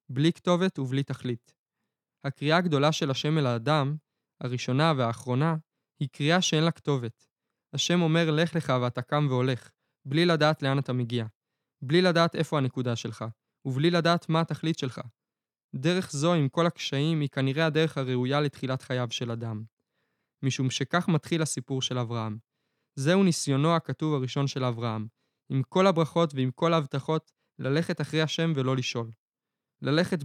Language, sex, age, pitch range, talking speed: Hebrew, male, 20-39, 130-165 Hz, 145 wpm